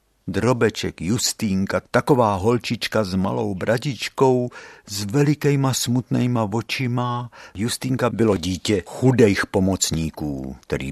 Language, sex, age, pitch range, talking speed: Czech, male, 60-79, 100-150 Hz, 95 wpm